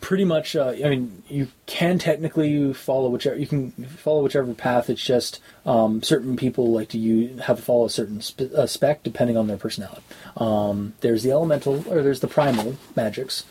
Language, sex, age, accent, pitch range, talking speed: English, male, 20-39, American, 115-145 Hz, 190 wpm